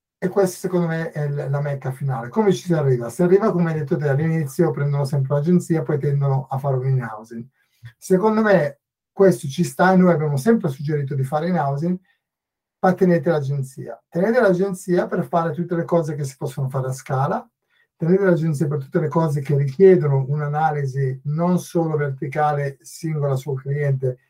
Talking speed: 180 wpm